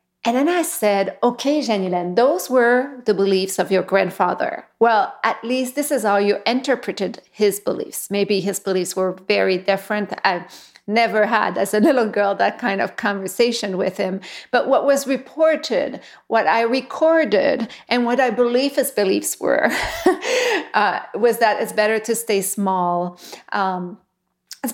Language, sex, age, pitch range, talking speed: English, female, 40-59, 195-235 Hz, 160 wpm